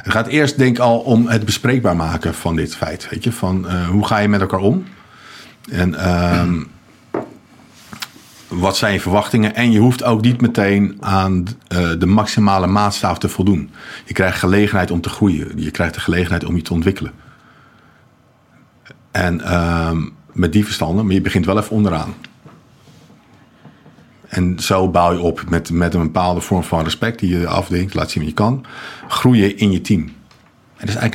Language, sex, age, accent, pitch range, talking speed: Dutch, male, 50-69, Dutch, 85-105 Hz, 185 wpm